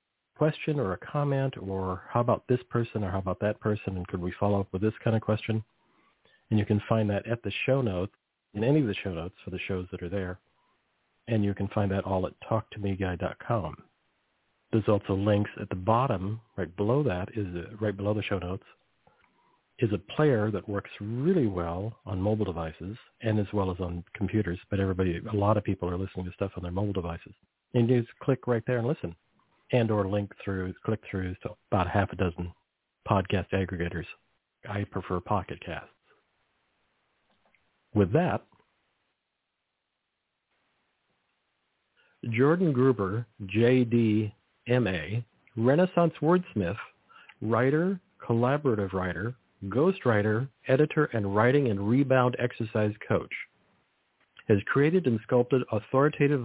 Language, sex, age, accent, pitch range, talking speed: English, male, 50-69, American, 95-120 Hz, 155 wpm